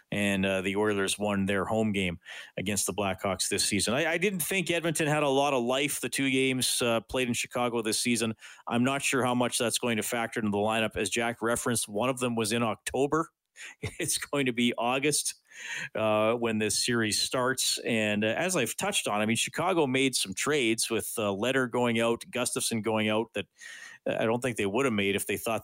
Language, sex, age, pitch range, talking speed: English, male, 40-59, 110-135 Hz, 220 wpm